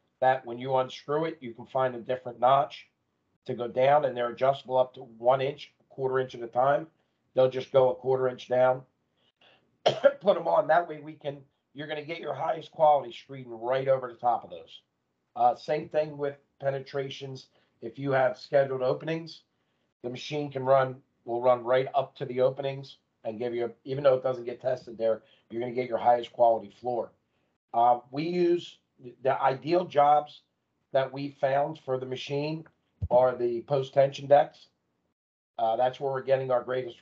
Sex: male